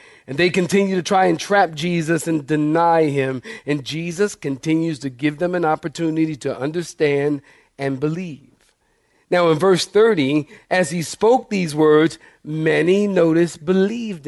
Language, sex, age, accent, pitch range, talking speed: English, male, 50-69, American, 140-185 Hz, 145 wpm